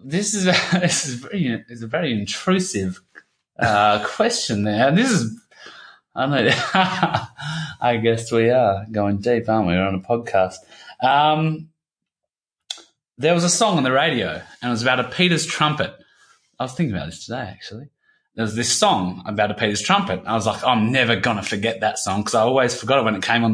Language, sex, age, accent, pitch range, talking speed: English, male, 20-39, Australian, 105-140 Hz, 200 wpm